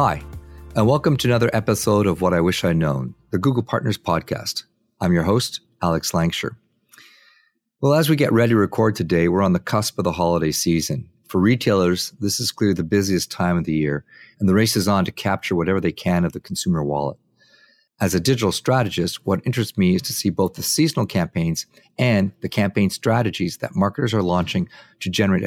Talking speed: 205 wpm